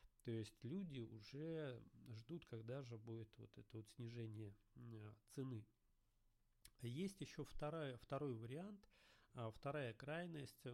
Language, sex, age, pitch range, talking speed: Russian, male, 40-59, 115-145 Hz, 105 wpm